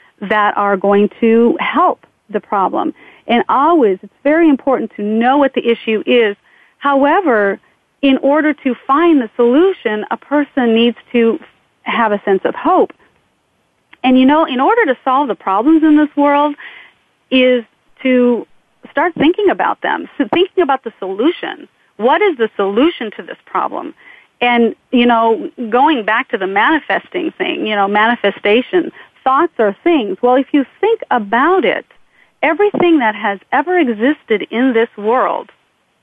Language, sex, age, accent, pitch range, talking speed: English, female, 40-59, American, 220-295 Hz, 155 wpm